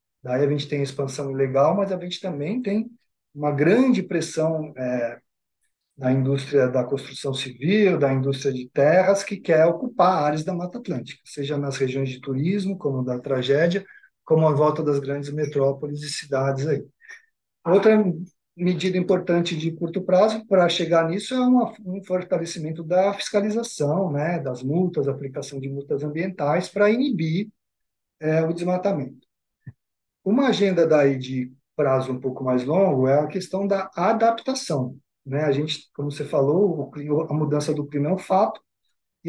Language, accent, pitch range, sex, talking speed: Portuguese, Brazilian, 140-180 Hz, male, 155 wpm